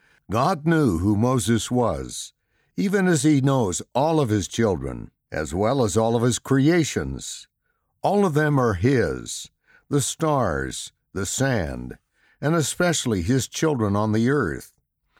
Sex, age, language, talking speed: male, 60-79, English, 140 wpm